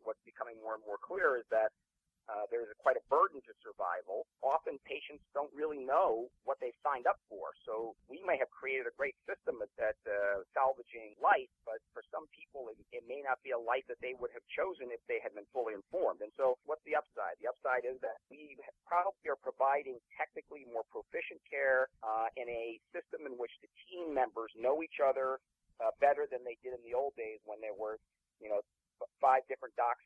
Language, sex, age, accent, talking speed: English, male, 40-59, American, 210 wpm